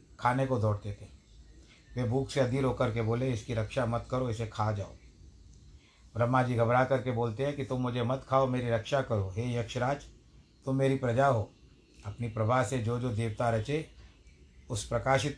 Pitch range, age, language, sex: 110-130 Hz, 60-79, Hindi, male